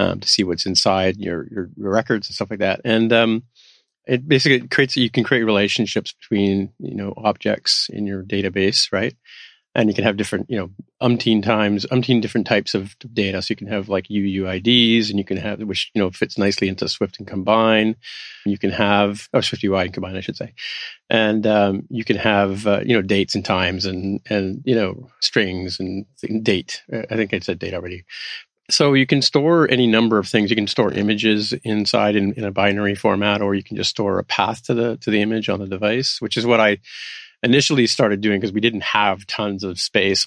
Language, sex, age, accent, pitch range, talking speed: English, male, 40-59, American, 100-115 Hz, 215 wpm